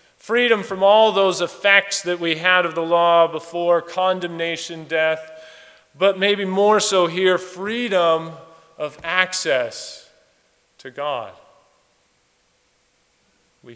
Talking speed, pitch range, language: 110 wpm, 130-170 Hz, English